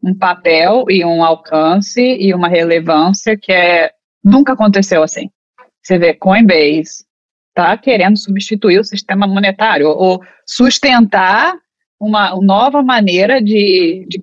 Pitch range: 180-220 Hz